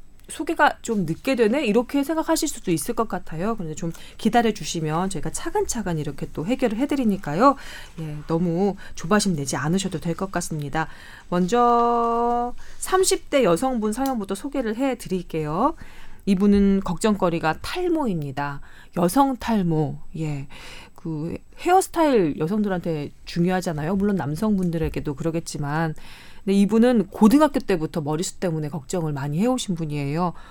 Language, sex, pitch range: Korean, female, 165-240 Hz